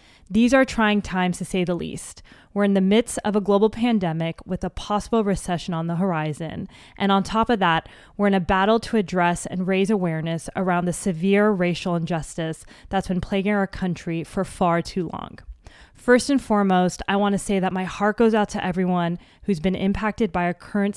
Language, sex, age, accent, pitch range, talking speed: English, female, 20-39, American, 175-215 Hz, 200 wpm